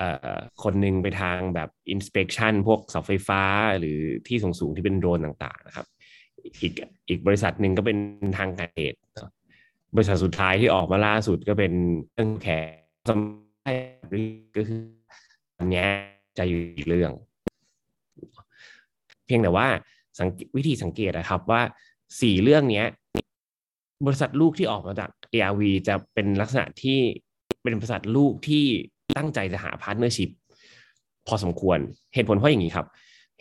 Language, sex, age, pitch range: Thai, male, 20-39, 95-120 Hz